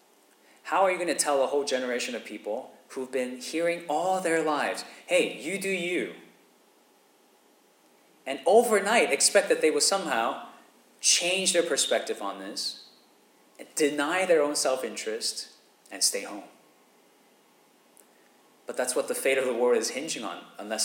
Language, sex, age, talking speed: English, male, 30-49, 150 wpm